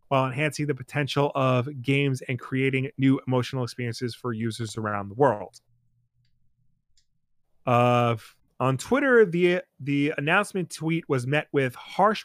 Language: English